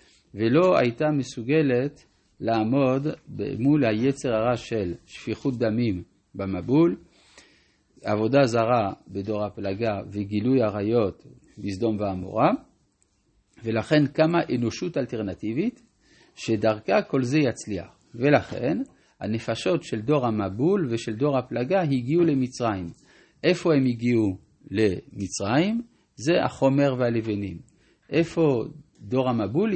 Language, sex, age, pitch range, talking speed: Hebrew, male, 50-69, 105-140 Hz, 95 wpm